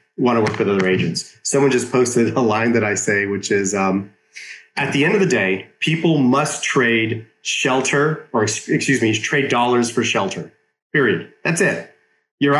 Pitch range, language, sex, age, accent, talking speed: 110-135 Hz, English, male, 30-49, American, 180 wpm